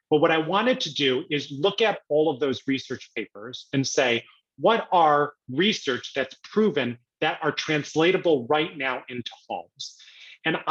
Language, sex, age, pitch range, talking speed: English, male, 30-49, 130-180 Hz, 160 wpm